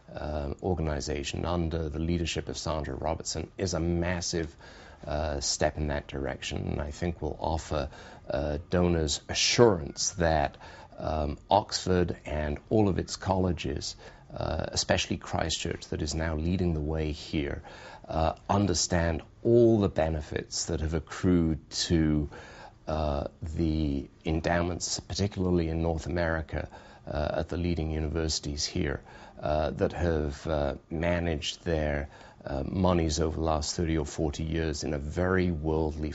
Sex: male